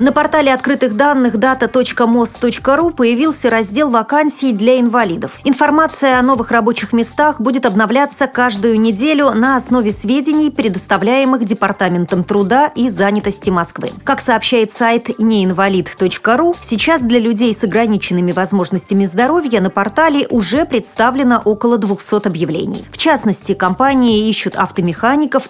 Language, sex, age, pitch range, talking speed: Russian, female, 30-49, 195-265 Hz, 120 wpm